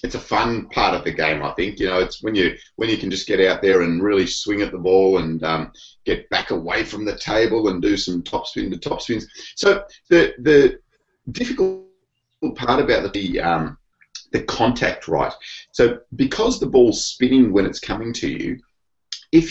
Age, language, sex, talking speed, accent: 30-49, English, male, 200 wpm, Australian